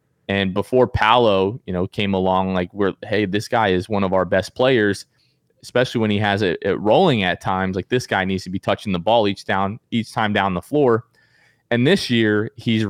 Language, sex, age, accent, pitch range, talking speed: English, male, 20-39, American, 100-115 Hz, 205 wpm